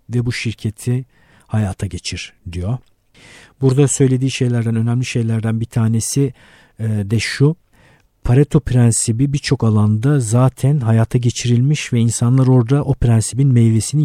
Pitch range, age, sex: 115-145 Hz, 50-69, male